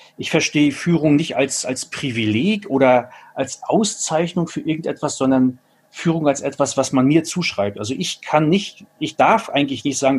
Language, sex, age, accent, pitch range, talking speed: German, male, 40-59, German, 130-170 Hz, 170 wpm